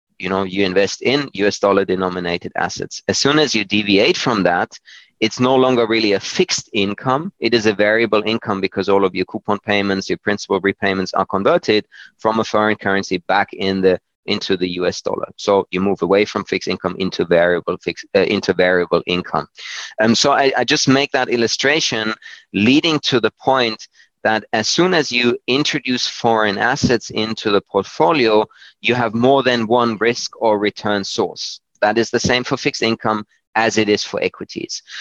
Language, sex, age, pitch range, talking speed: English, male, 30-49, 100-120 Hz, 185 wpm